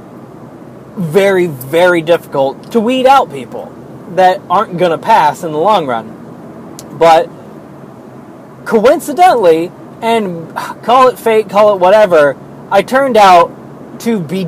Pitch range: 165-210 Hz